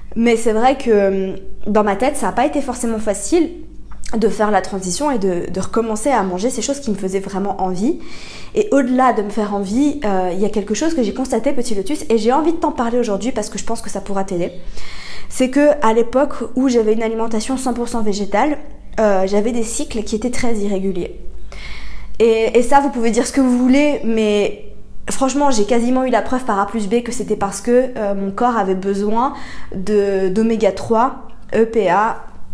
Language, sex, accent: French, female, French